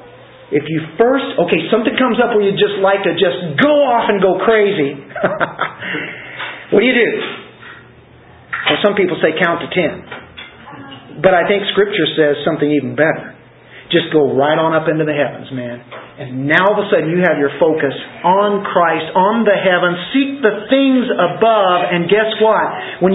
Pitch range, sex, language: 150-220 Hz, male, English